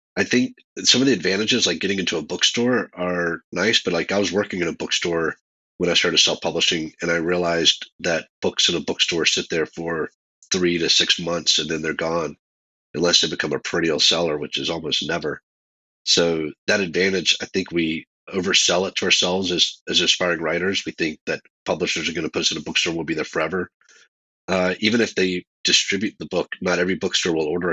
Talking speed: 210 wpm